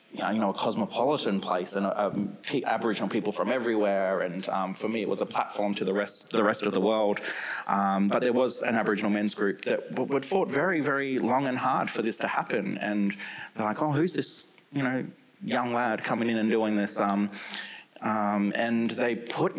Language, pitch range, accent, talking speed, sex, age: English, 100-115 Hz, Australian, 210 wpm, male, 20-39